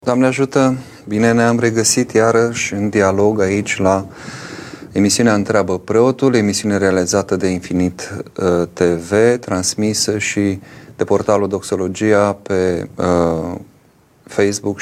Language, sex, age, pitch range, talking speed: Romanian, male, 30-49, 90-110 Hz, 100 wpm